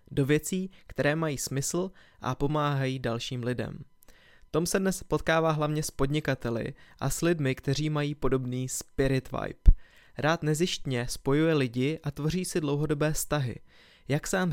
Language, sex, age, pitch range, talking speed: Czech, male, 20-39, 130-165 Hz, 150 wpm